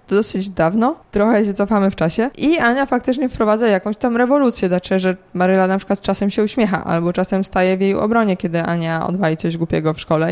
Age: 20-39